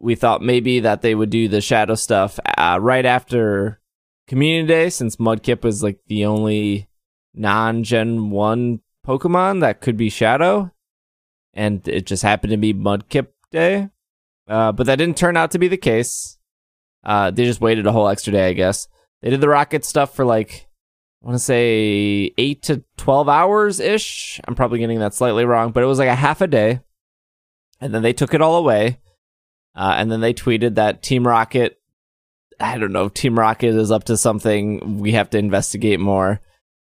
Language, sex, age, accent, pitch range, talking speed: English, male, 20-39, American, 105-145 Hz, 185 wpm